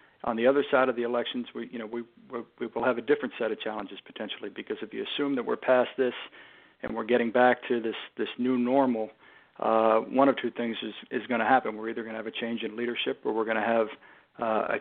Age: 50-69